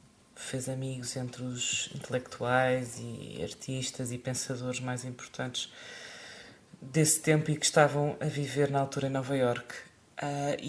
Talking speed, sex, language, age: 135 wpm, female, Portuguese, 20-39